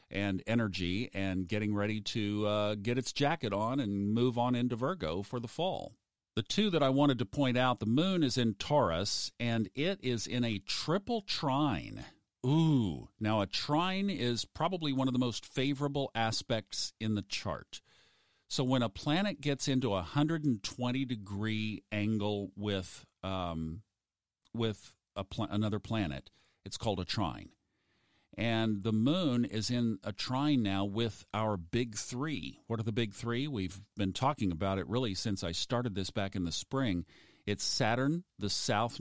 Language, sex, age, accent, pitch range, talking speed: English, male, 50-69, American, 100-130 Hz, 165 wpm